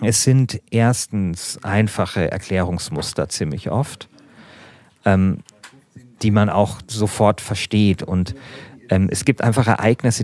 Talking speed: 110 wpm